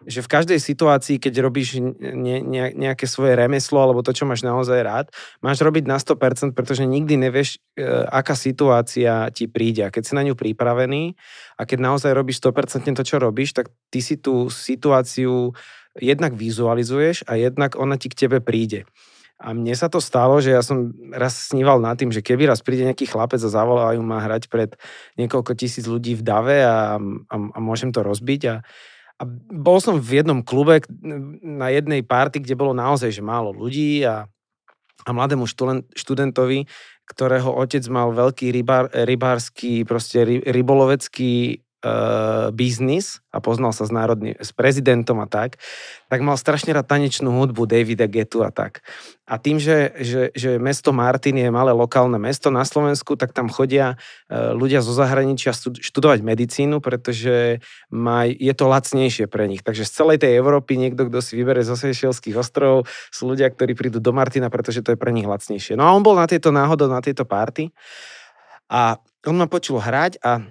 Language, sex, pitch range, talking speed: Slovak, male, 120-140 Hz, 175 wpm